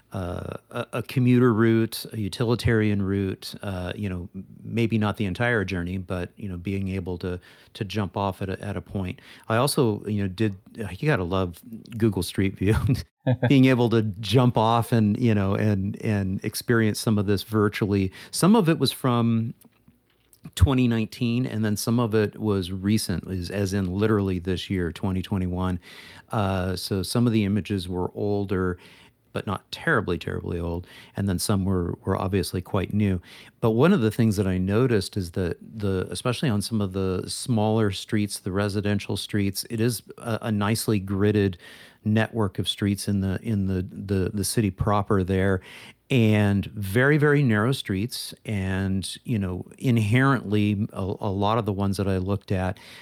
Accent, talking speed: American, 175 wpm